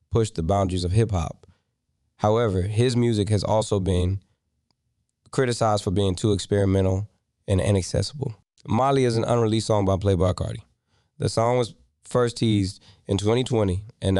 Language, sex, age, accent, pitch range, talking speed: English, male, 20-39, American, 95-115 Hz, 145 wpm